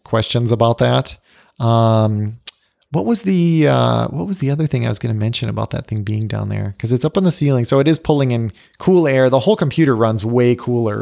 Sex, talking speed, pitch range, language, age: male, 230 wpm, 115-150 Hz, English, 30-49